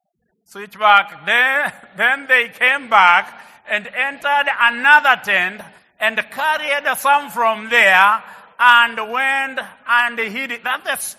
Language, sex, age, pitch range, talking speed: English, male, 60-79, 220-280 Hz, 120 wpm